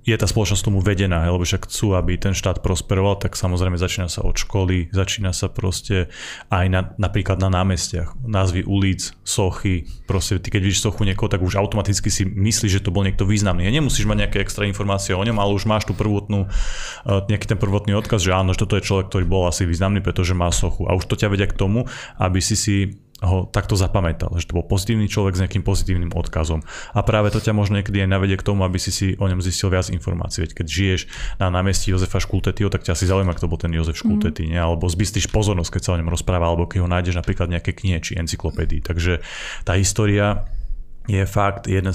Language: Slovak